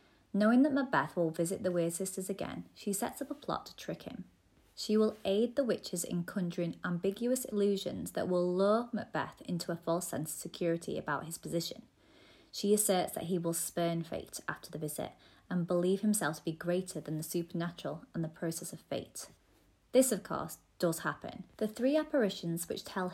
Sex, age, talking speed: female, 30-49, 190 wpm